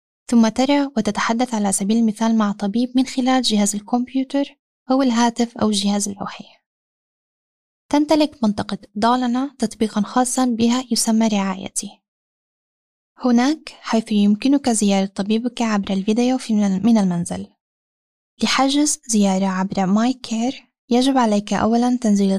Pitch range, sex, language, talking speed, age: 205-250 Hz, female, Arabic, 115 wpm, 10-29